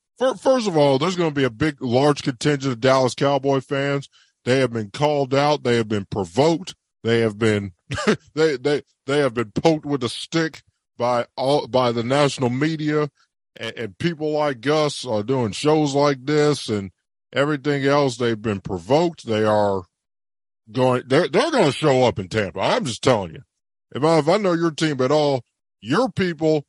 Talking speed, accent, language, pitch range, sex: 190 wpm, American, English, 115-160 Hz, male